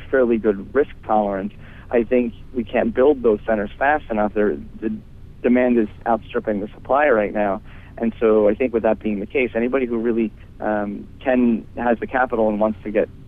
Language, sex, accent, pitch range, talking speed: English, male, American, 105-120 Hz, 190 wpm